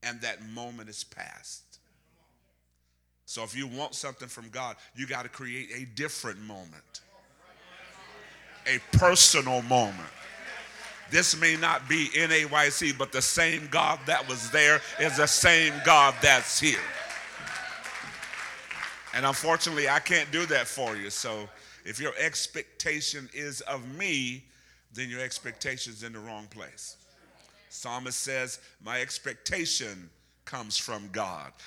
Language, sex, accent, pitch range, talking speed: English, male, American, 115-145 Hz, 135 wpm